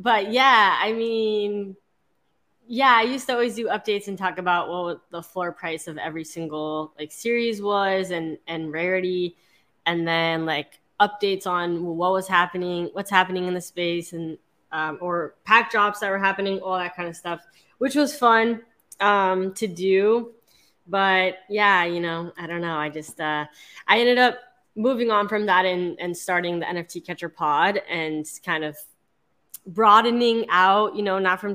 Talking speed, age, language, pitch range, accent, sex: 175 wpm, 20-39, English, 170-210 Hz, American, female